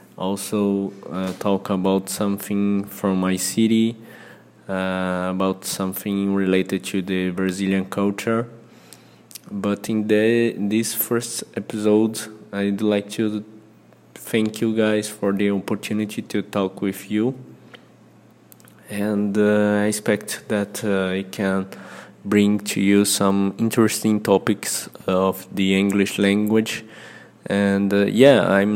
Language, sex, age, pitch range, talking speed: English, male, 20-39, 100-115 Hz, 120 wpm